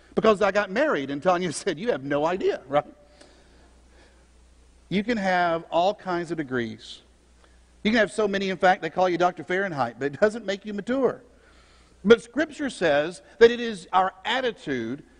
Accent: American